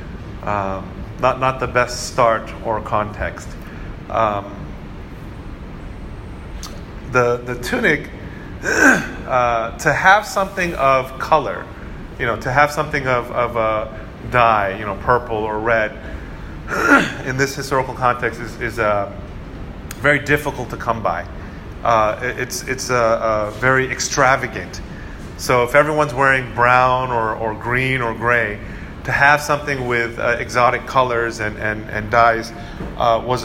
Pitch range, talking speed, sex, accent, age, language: 110-130 Hz, 130 wpm, male, American, 30-49, English